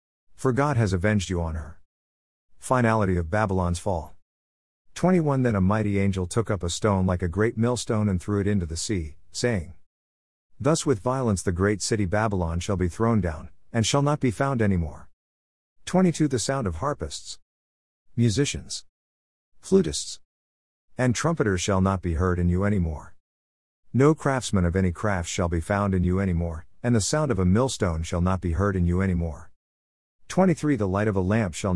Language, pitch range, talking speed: English, 80-115 Hz, 185 wpm